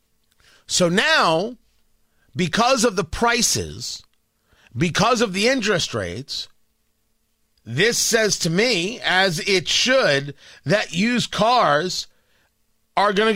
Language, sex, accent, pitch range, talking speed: English, male, American, 175-235 Hz, 110 wpm